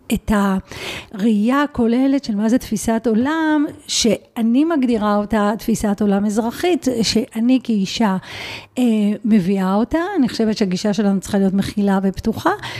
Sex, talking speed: female, 120 wpm